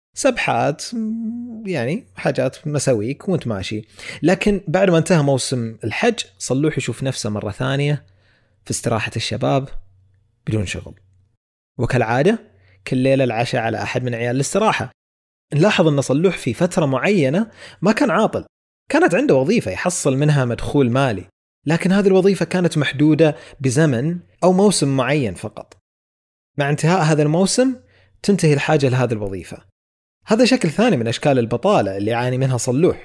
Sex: male